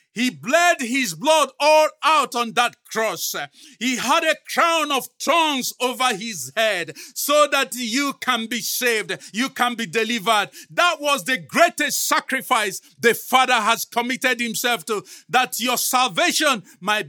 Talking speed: 150 wpm